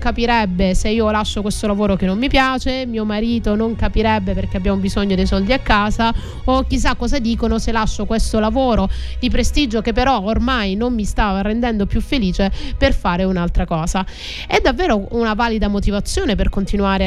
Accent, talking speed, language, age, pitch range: native, 180 wpm, Italian, 30-49, 190-235 Hz